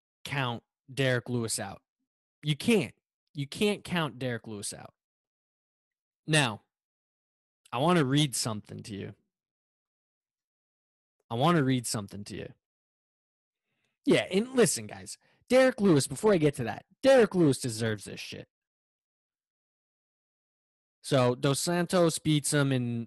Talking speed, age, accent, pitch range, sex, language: 125 wpm, 20-39, American, 110-150 Hz, male, English